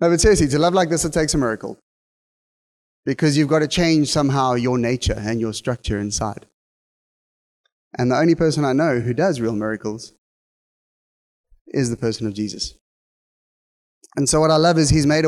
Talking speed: 180 wpm